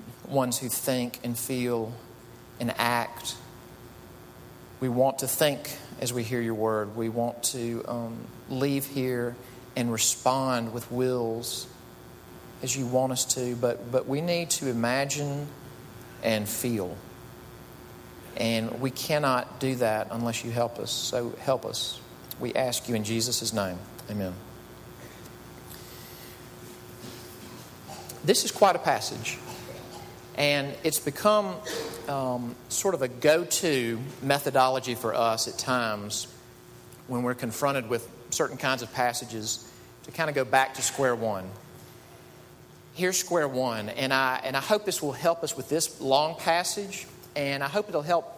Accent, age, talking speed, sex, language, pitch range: American, 40-59, 140 wpm, male, English, 115-145 Hz